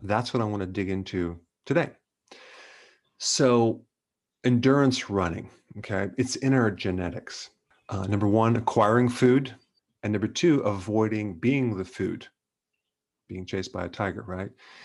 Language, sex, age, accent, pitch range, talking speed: English, male, 40-59, American, 100-120 Hz, 135 wpm